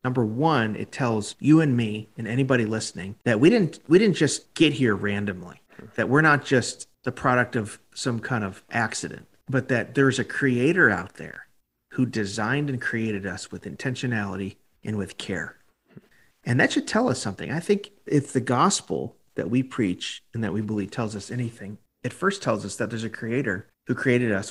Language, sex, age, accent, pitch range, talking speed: English, male, 40-59, American, 105-135 Hz, 195 wpm